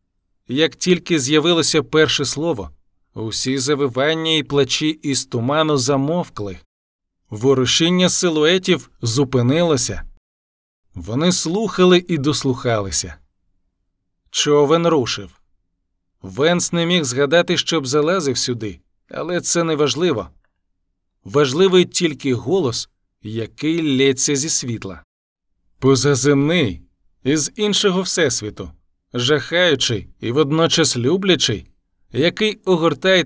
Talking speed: 90 wpm